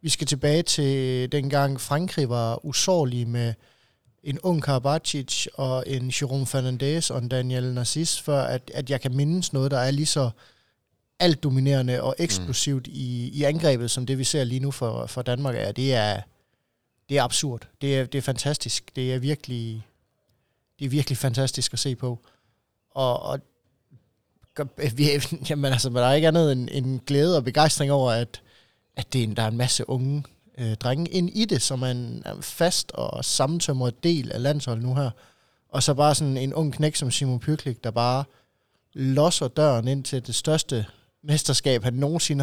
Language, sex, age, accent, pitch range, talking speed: Danish, male, 20-39, native, 125-145 Hz, 175 wpm